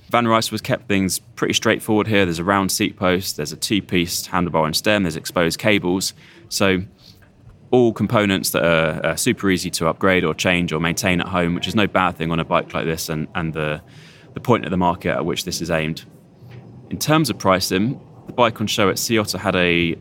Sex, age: male, 20-39